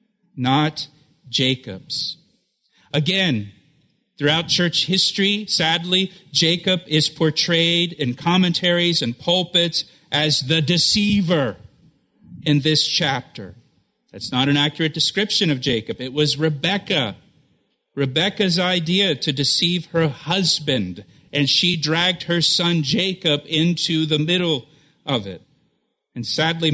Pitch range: 135-175 Hz